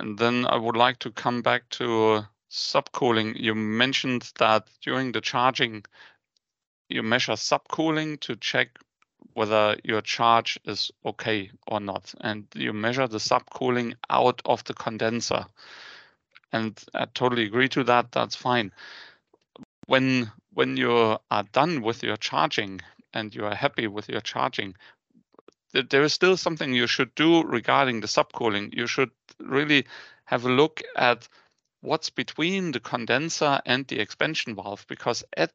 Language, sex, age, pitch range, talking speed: English, male, 40-59, 115-140 Hz, 150 wpm